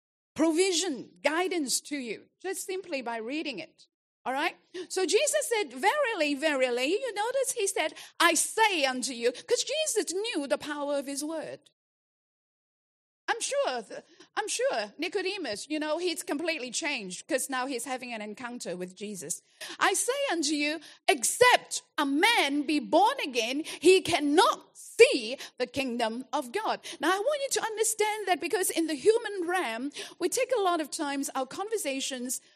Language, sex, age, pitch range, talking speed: English, female, 50-69, 270-385 Hz, 160 wpm